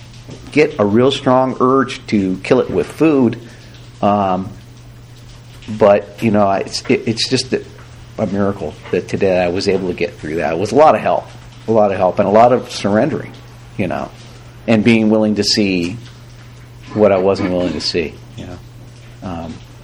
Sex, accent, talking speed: male, American, 180 wpm